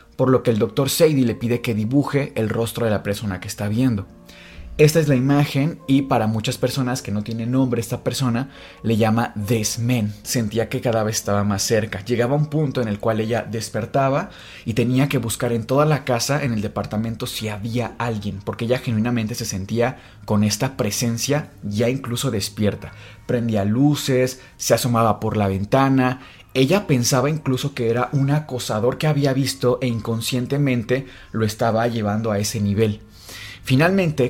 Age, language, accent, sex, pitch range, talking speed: 30-49, Spanish, Mexican, male, 110-130 Hz, 175 wpm